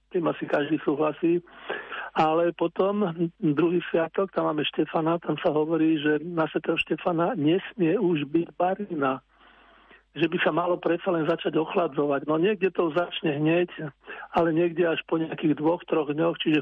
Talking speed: 165 wpm